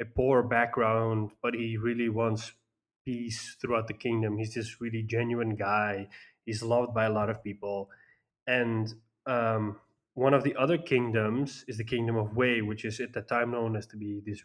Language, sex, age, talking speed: English, male, 20-39, 185 wpm